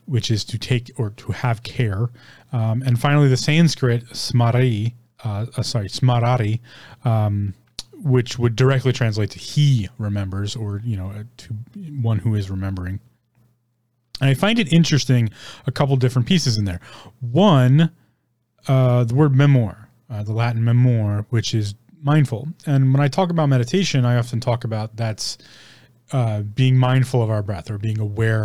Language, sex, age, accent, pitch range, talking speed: English, male, 30-49, American, 110-130 Hz, 165 wpm